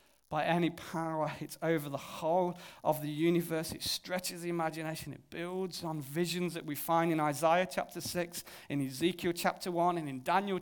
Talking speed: 180 wpm